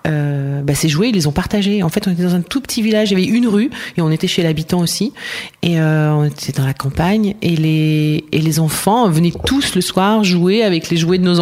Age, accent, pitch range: 30-49, French, 150-185 Hz